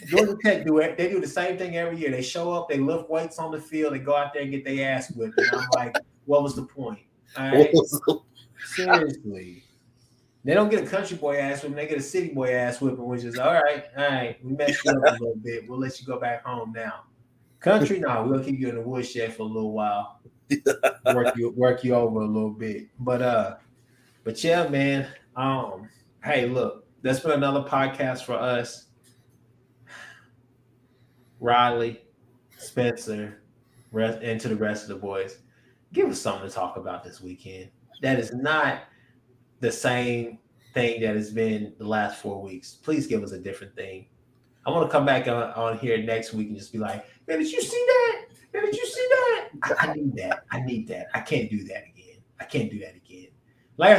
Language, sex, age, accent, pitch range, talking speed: English, male, 20-39, American, 115-145 Hz, 205 wpm